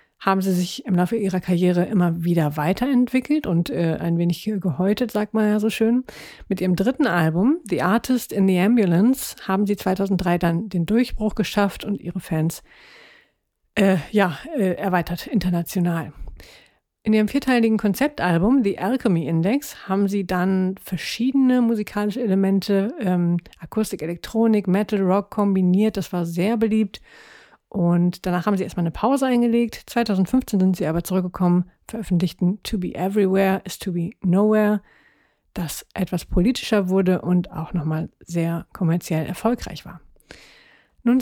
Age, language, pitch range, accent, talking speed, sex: 50-69, German, 180-220 Hz, German, 145 wpm, female